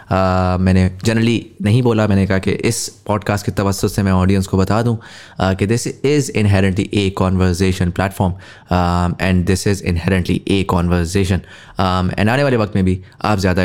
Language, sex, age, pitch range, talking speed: English, male, 20-39, 95-125 Hz, 155 wpm